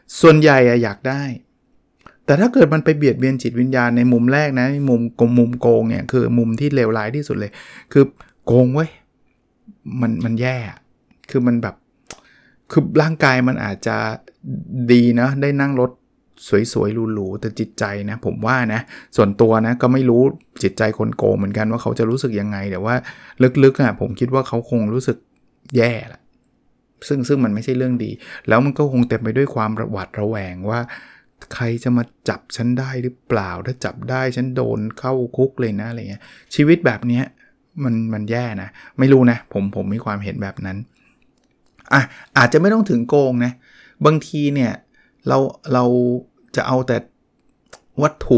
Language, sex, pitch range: Thai, male, 110-130 Hz